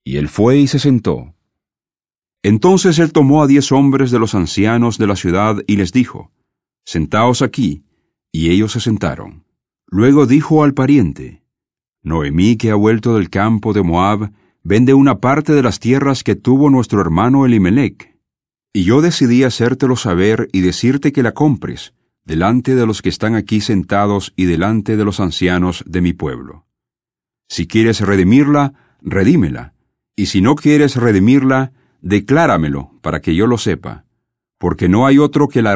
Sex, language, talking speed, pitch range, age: male, English, 160 wpm, 100-130 Hz, 40-59